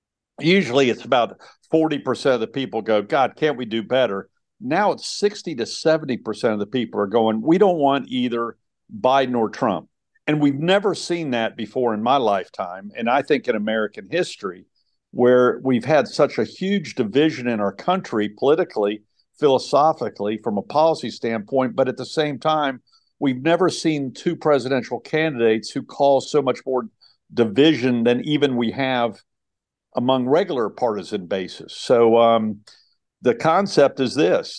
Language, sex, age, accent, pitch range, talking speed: English, male, 50-69, American, 115-145 Hz, 160 wpm